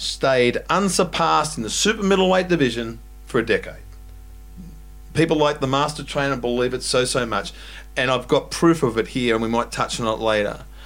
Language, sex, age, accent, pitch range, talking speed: English, male, 40-59, Australian, 120-170 Hz, 190 wpm